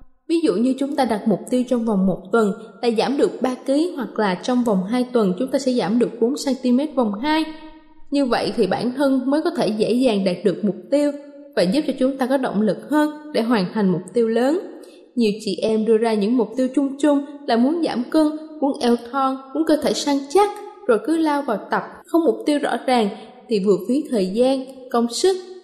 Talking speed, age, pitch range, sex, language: 230 wpm, 20-39, 220-295 Hz, female, Vietnamese